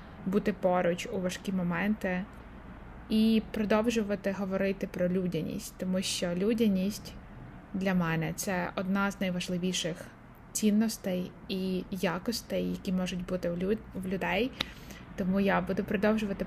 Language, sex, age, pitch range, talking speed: Ukrainian, female, 20-39, 180-205 Hz, 115 wpm